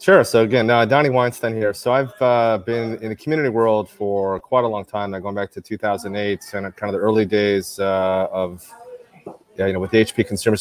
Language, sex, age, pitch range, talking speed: Spanish, male, 30-49, 100-115 Hz, 220 wpm